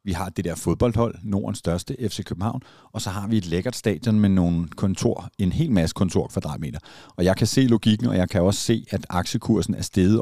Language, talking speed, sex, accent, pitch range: Danish, 225 wpm, male, native, 90-110 Hz